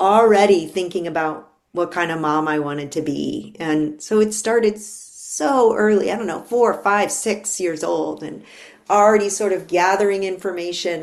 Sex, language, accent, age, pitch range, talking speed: female, English, American, 40-59, 165-215 Hz, 170 wpm